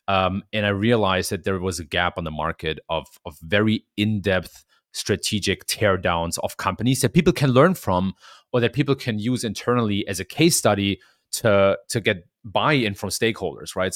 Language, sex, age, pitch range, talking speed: English, male, 30-49, 95-120 Hz, 190 wpm